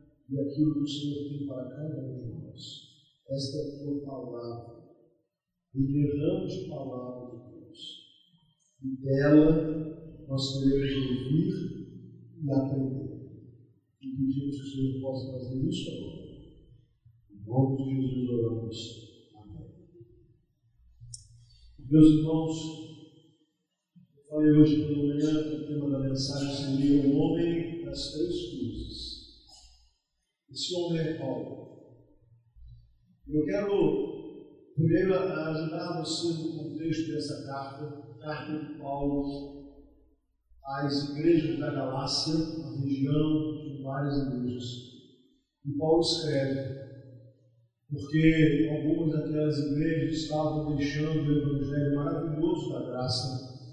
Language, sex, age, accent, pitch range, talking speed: Portuguese, male, 50-69, Brazilian, 135-155 Hz, 115 wpm